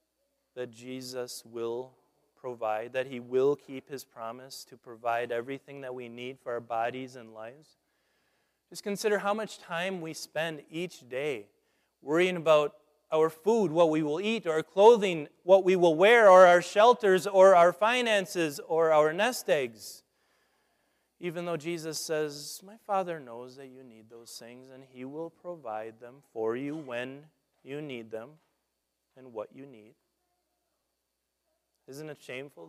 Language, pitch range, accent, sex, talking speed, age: English, 130-195 Hz, American, male, 155 wpm, 30-49